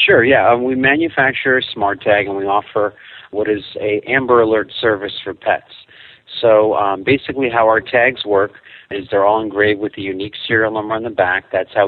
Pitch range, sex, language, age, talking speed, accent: 100-115 Hz, male, English, 40-59, 200 wpm, American